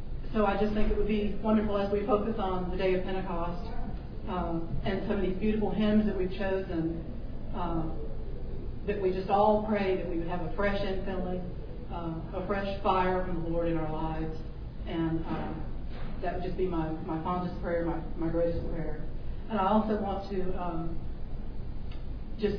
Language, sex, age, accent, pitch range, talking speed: English, female, 40-59, American, 180-210 Hz, 185 wpm